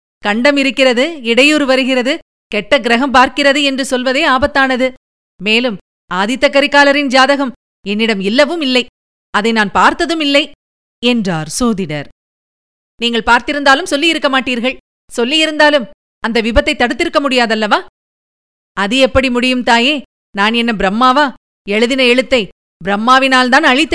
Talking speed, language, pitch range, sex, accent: 110 wpm, Tamil, 220-290 Hz, female, native